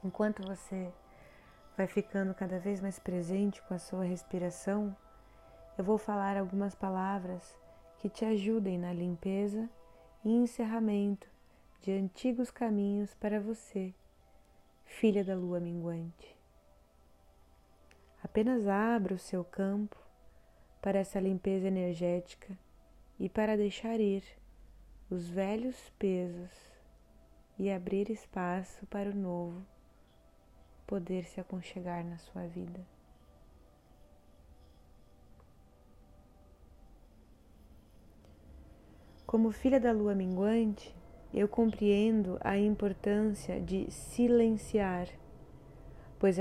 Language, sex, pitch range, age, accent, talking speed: Portuguese, female, 165-210 Hz, 20-39, Brazilian, 95 wpm